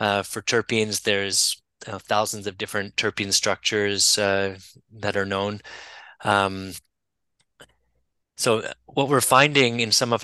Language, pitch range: English, 100-115 Hz